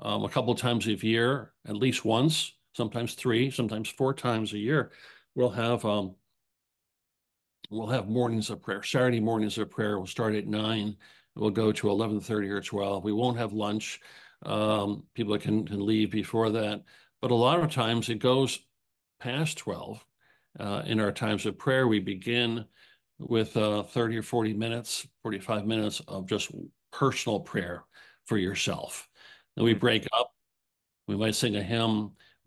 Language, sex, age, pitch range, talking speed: English, male, 50-69, 105-120 Hz, 165 wpm